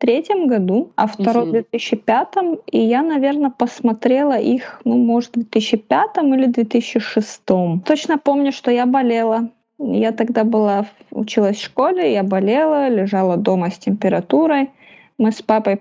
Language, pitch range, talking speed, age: Russian, 210-250 Hz, 145 wpm, 20-39